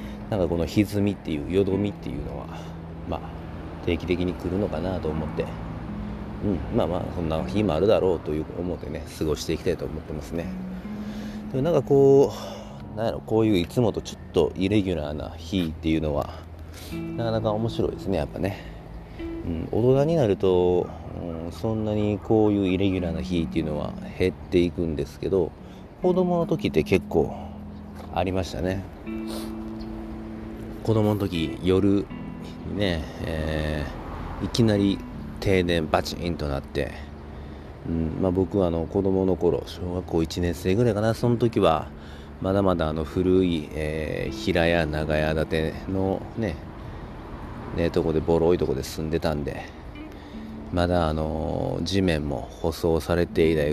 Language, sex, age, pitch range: Japanese, male, 40-59, 80-100 Hz